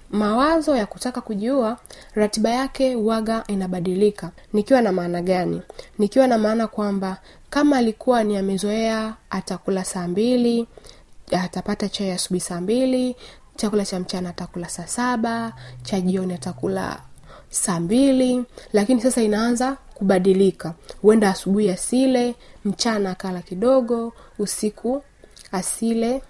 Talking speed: 115 wpm